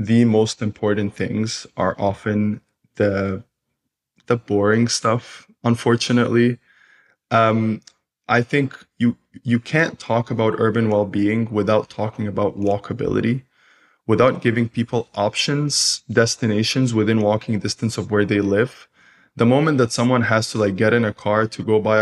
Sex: male